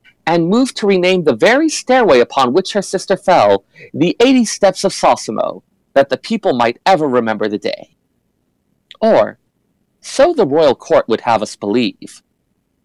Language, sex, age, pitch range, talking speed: English, male, 40-59, 130-215 Hz, 160 wpm